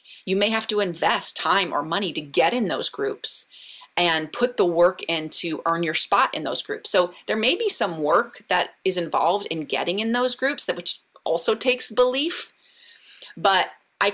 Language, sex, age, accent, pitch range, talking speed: English, female, 30-49, American, 175-225 Hz, 195 wpm